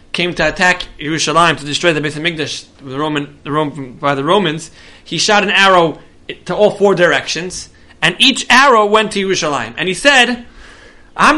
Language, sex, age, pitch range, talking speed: English, male, 20-39, 135-185 Hz, 160 wpm